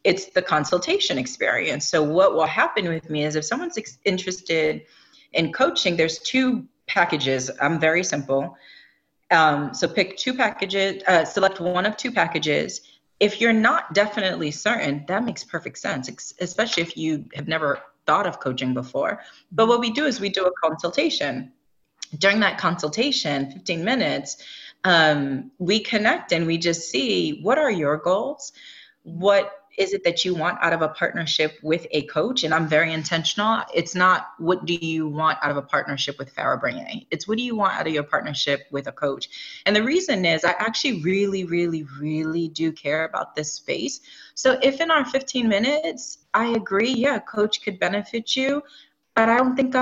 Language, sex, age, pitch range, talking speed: English, female, 30-49, 160-225 Hz, 180 wpm